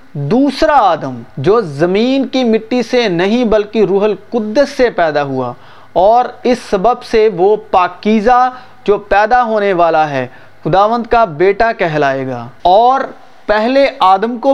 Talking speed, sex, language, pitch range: 140 wpm, male, Urdu, 175-235 Hz